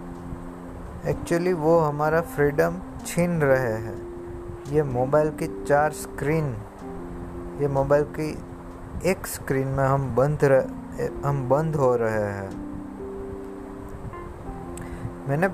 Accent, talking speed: Indian, 100 wpm